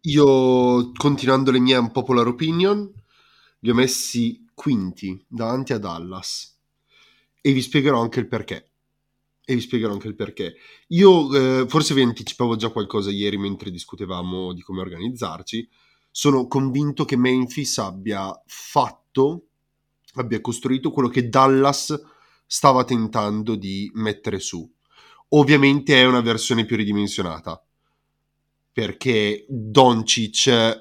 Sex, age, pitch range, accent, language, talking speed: male, 30-49, 105-140 Hz, native, Italian, 125 wpm